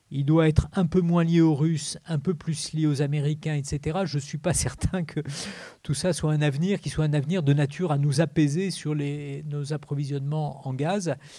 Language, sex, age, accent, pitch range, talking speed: French, male, 40-59, French, 140-165 Hz, 220 wpm